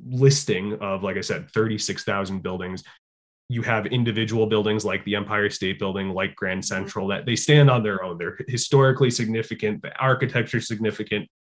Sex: male